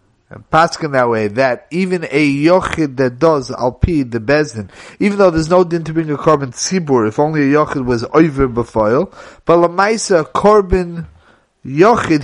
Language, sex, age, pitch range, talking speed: English, male, 30-49, 135-185 Hz, 170 wpm